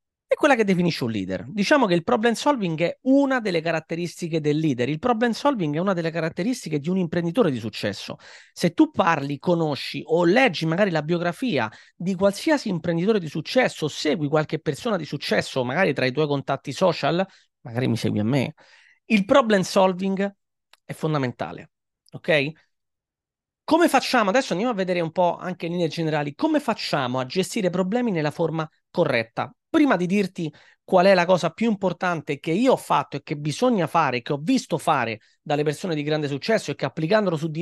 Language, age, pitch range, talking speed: Italian, 30-49, 150-210 Hz, 185 wpm